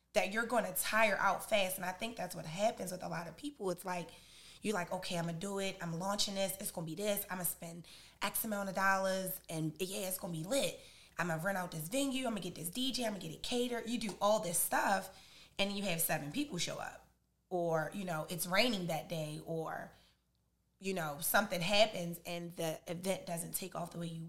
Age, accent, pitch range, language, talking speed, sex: 20-39, American, 165-200 Hz, English, 235 wpm, female